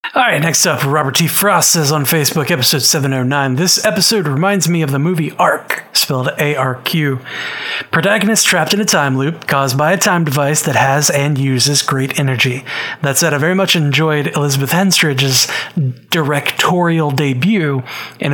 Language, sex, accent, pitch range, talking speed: English, male, American, 140-175 Hz, 160 wpm